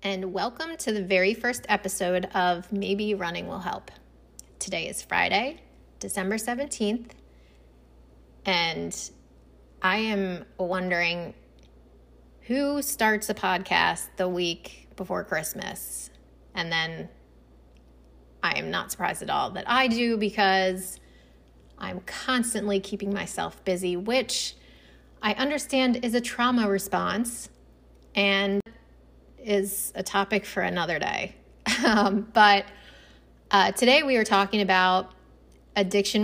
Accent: American